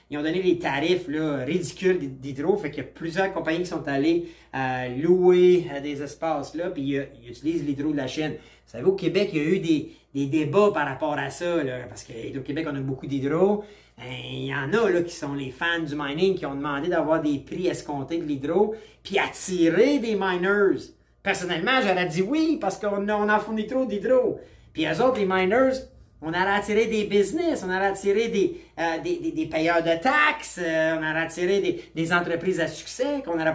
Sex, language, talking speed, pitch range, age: male, French, 220 wpm, 160-205 Hz, 30-49